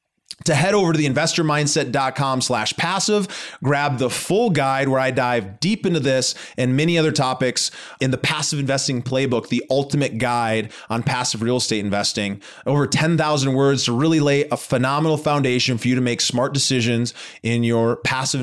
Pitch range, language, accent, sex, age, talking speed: 120-150 Hz, English, American, male, 30-49, 170 wpm